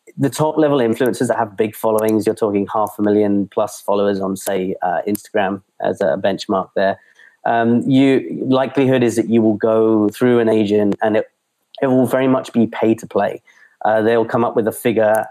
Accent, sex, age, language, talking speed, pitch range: British, male, 30-49, English, 200 wpm, 105-120 Hz